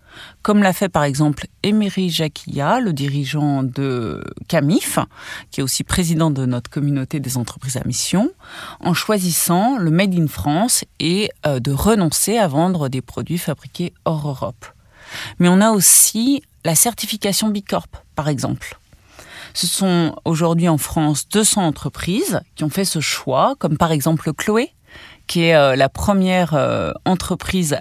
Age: 40-59